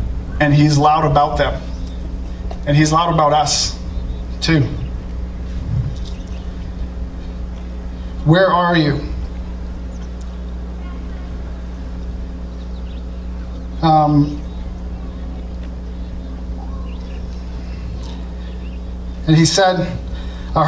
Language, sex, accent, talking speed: English, male, American, 55 wpm